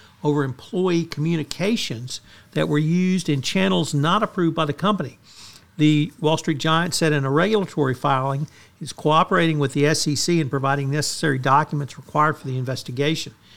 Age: 60-79